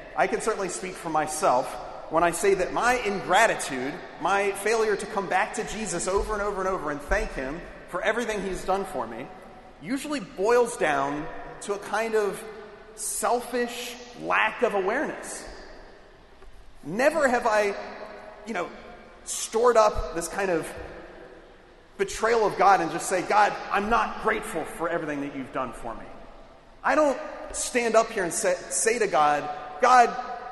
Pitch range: 190-250 Hz